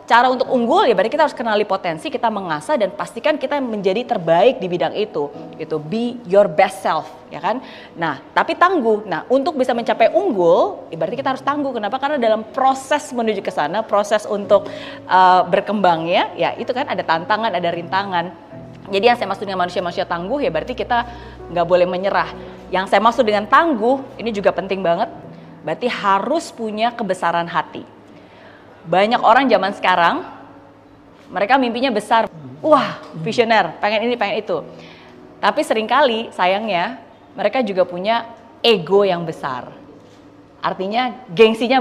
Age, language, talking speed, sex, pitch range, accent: 20-39, Indonesian, 155 wpm, female, 180-255 Hz, native